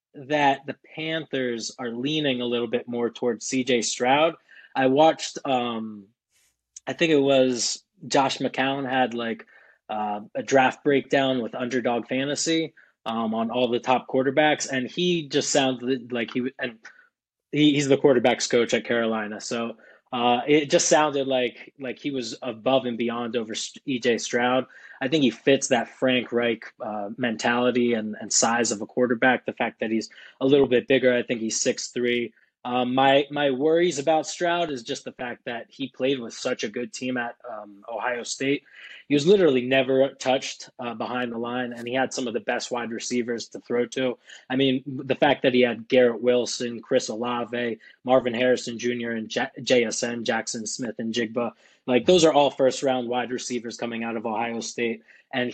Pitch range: 120-135 Hz